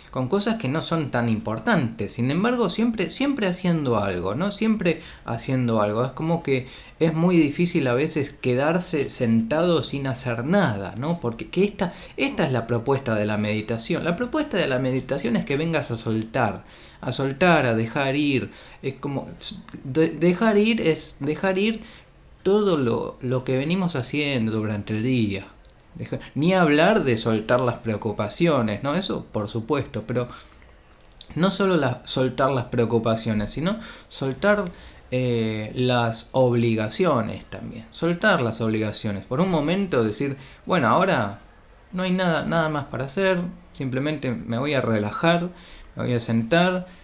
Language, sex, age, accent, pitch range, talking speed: Spanish, male, 20-39, Argentinian, 115-170 Hz, 155 wpm